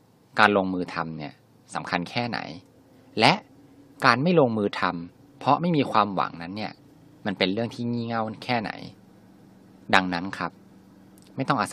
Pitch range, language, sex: 85-125 Hz, Thai, male